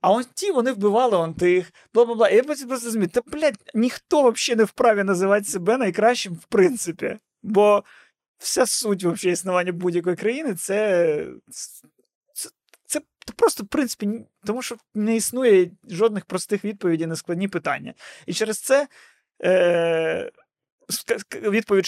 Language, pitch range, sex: Ukrainian, 165-230 Hz, male